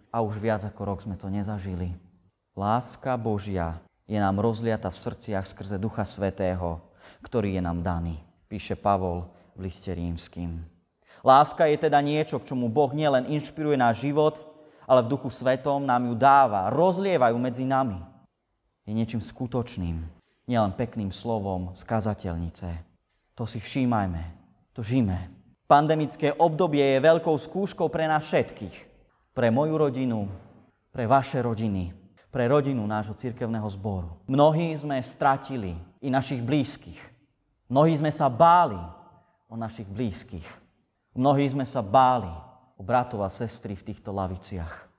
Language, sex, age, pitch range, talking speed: Slovak, male, 30-49, 95-130 Hz, 135 wpm